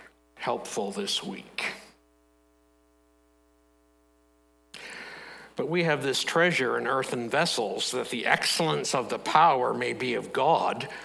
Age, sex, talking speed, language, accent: 60-79, male, 115 wpm, English, American